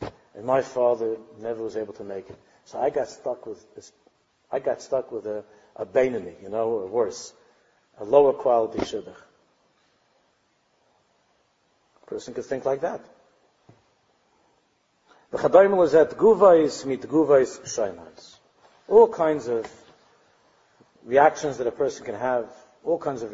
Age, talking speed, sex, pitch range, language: 50-69, 140 wpm, male, 130-215 Hz, English